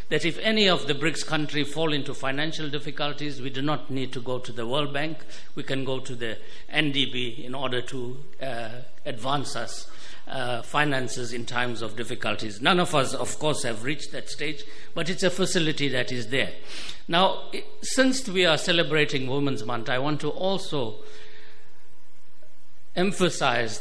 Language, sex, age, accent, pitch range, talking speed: English, male, 60-79, Indian, 125-160 Hz, 170 wpm